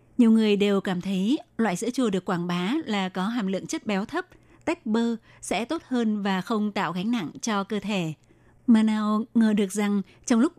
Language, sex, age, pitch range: Vietnamese, female, 20-39, 195-230 Hz